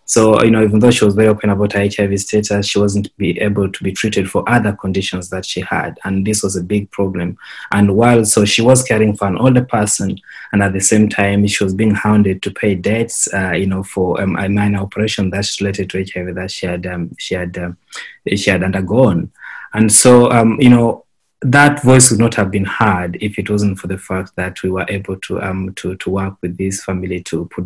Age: 20-39